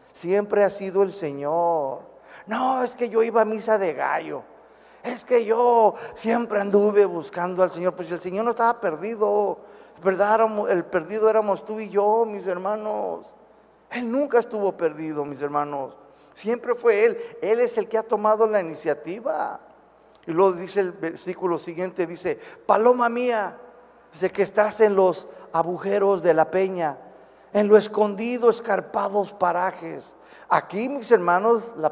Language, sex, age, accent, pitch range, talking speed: Spanish, male, 50-69, Mexican, 170-225 Hz, 150 wpm